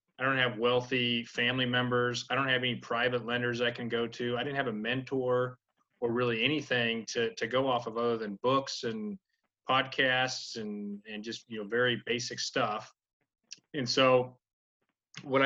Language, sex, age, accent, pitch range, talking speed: English, male, 30-49, American, 120-130 Hz, 175 wpm